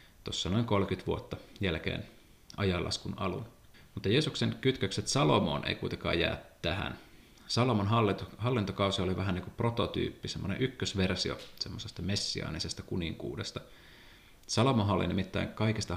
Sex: male